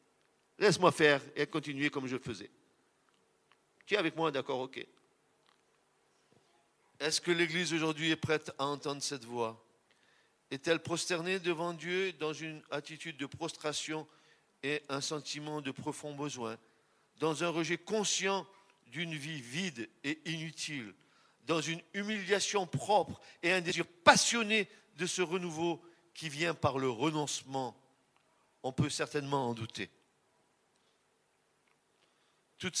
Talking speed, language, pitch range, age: 130 wpm, French, 140-165 Hz, 50-69